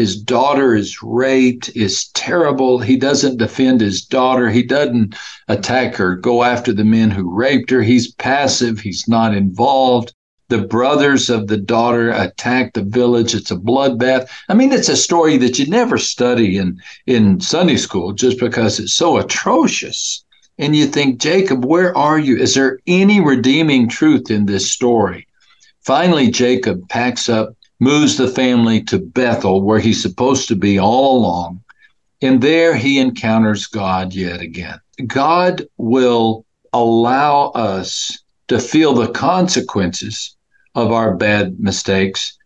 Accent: American